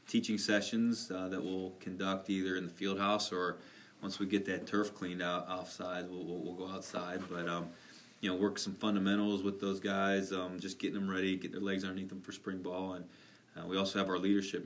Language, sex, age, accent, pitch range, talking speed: English, male, 20-39, American, 90-100 Hz, 225 wpm